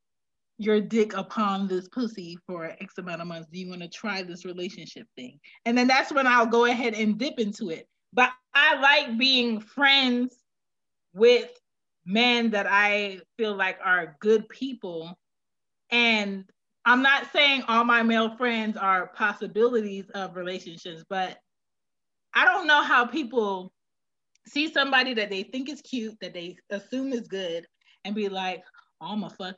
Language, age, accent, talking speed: English, 20-39, American, 160 wpm